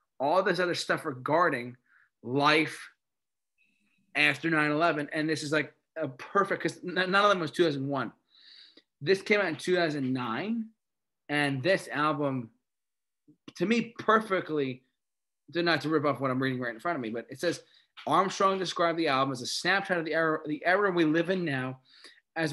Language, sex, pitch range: English, male, 140-175 Hz